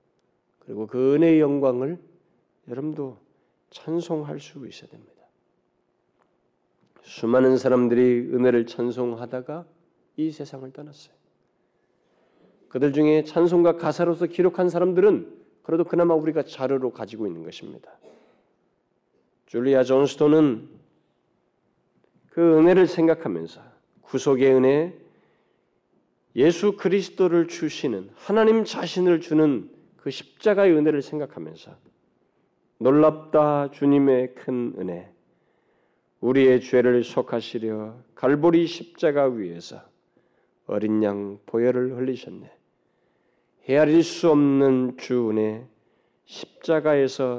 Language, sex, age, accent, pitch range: Korean, male, 40-59, native, 125-165 Hz